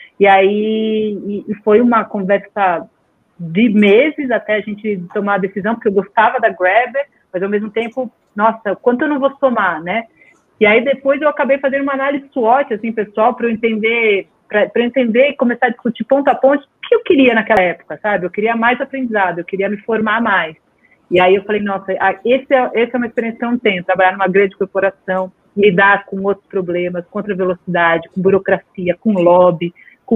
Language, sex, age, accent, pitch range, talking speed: Portuguese, female, 40-59, Brazilian, 200-240 Hz, 200 wpm